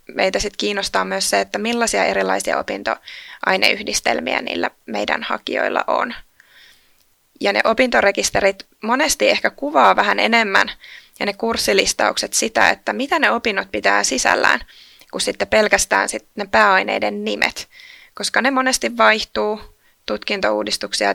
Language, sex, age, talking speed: Finnish, female, 20-39, 120 wpm